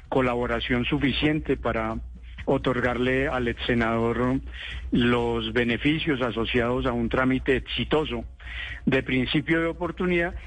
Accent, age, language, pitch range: Colombian, 50-69, Spanish, 115-135 Hz